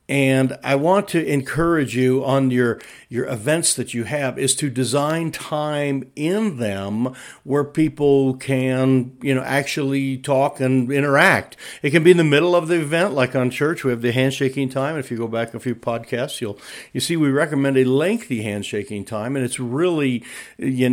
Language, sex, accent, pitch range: English, male, American, 120-145 Hz